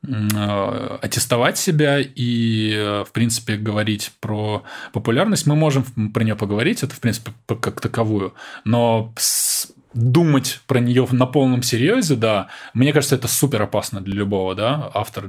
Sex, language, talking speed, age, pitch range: male, Russian, 140 wpm, 20-39, 105-125 Hz